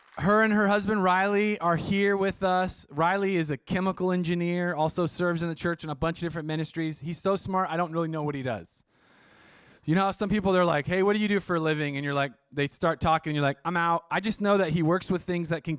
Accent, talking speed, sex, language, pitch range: American, 270 wpm, male, English, 135-170 Hz